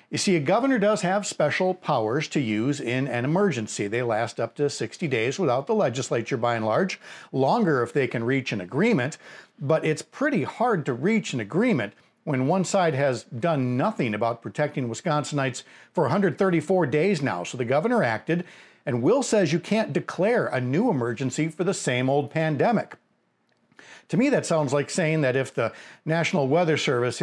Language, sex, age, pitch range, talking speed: English, male, 50-69, 125-170 Hz, 185 wpm